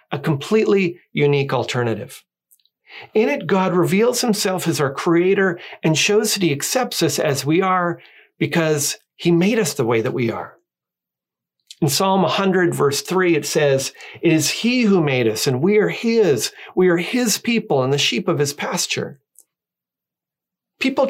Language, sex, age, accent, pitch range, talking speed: English, male, 40-59, American, 140-185 Hz, 165 wpm